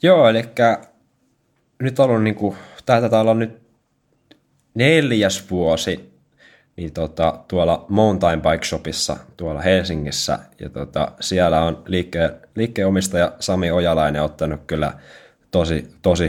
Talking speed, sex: 120 wpm, male